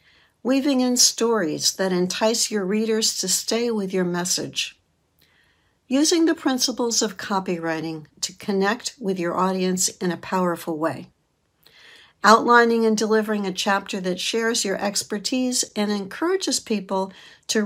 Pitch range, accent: 185-240 Hz, American